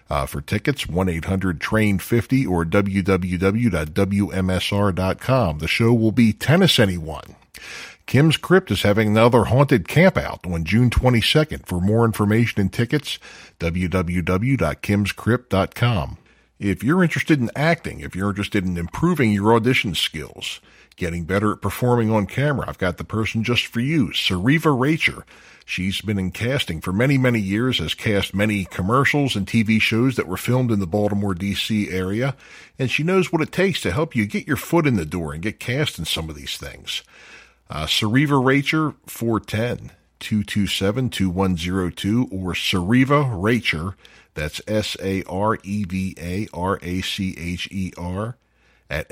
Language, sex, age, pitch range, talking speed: English, male, 50-69, 95-125 Hz, 135 wpm